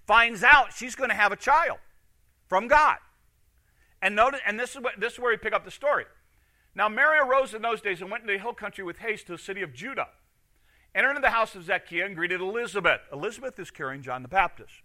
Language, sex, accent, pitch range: English, male, American, 160-220 Hz